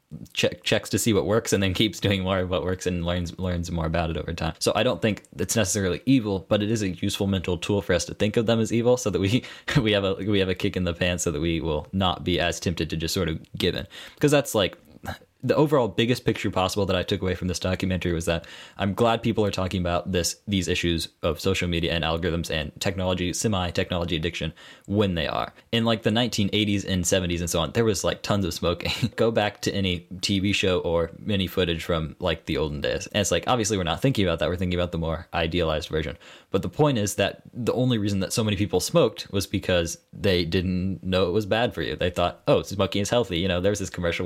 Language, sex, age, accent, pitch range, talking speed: English, male, 20-39, American, 85-105 Hz, 255 wpm